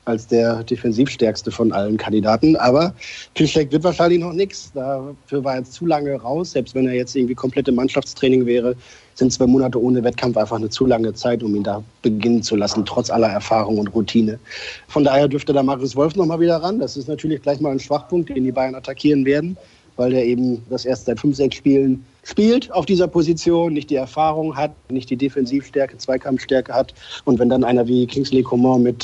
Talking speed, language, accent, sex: 205 wpm, German, German, male